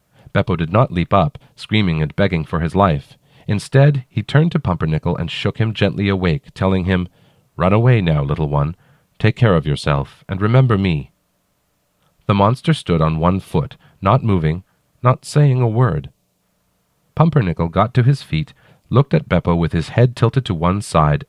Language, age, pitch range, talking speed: English, 40-59, 85-125 Hz, 175 wpm